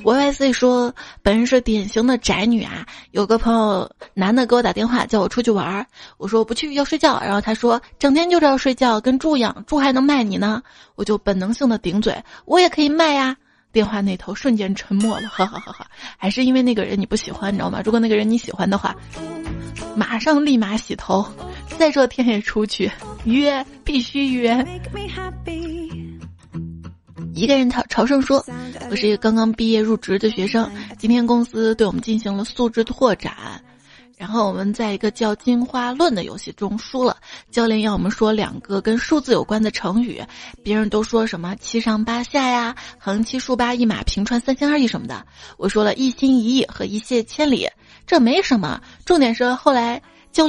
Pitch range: 205-255 Hz